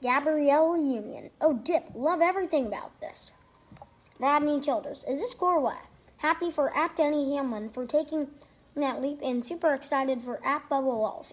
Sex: female